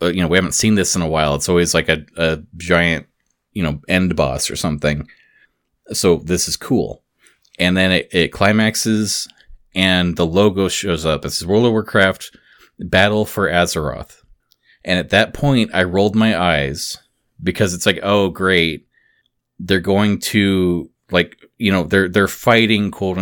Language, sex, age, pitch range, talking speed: English, male, 30-49, 85-100 Hz, 170 wpm